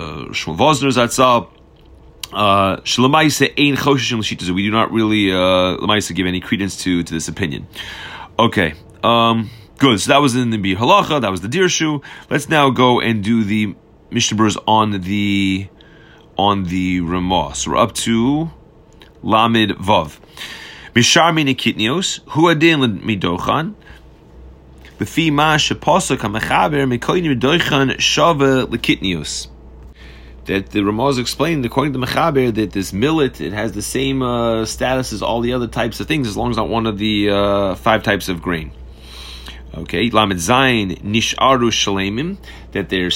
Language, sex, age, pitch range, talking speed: English, male, 30-49, 95-130 Hz, 140 wpm